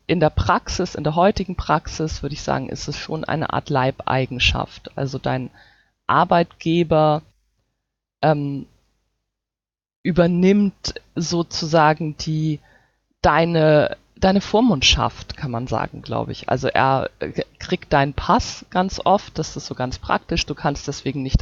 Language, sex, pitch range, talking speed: German, female, 130-160 Hz, 130 wpm